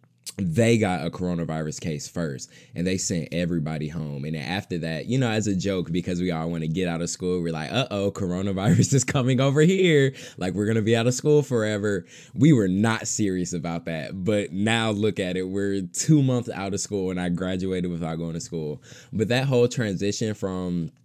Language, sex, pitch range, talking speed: English, male, 85-105 Hz, 215 wpm